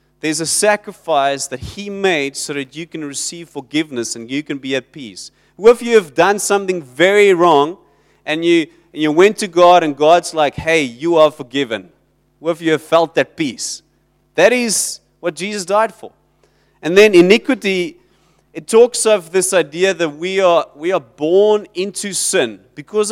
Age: 30-49